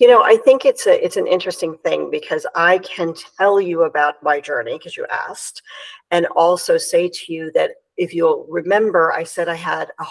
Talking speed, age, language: 210 wpm, 50-69, English